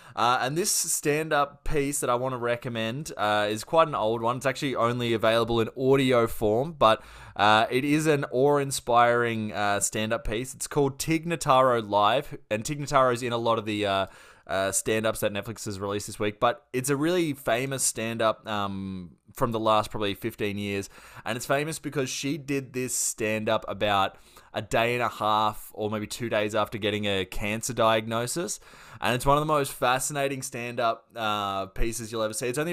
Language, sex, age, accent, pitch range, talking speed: English, male, 20-39, Australian, 105-135 Hz, 190 wpm